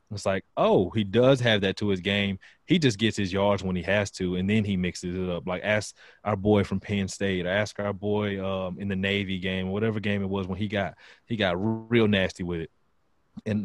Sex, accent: male, American